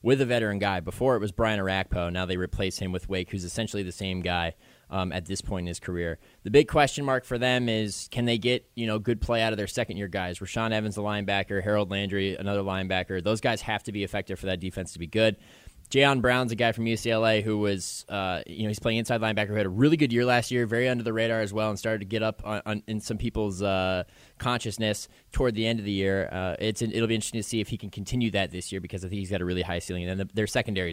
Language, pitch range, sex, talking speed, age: English, 95-120 Hz, male, 275 wpm, 20-39